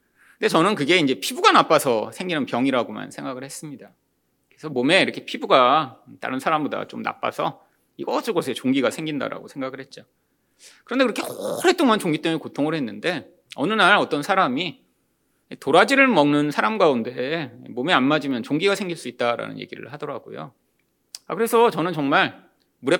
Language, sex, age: Korean, male, 30-49